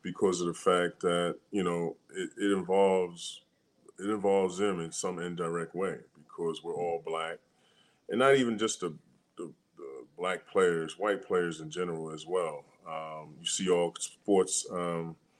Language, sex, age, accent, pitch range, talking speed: English, male, 30-49, American, 80-90 Hz, 165 wpm